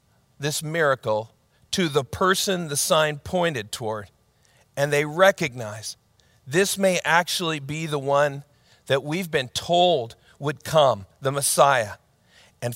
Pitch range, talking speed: 135-190 Hz, 125 wpm